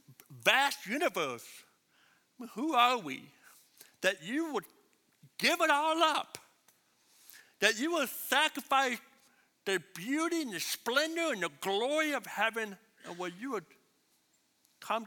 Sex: male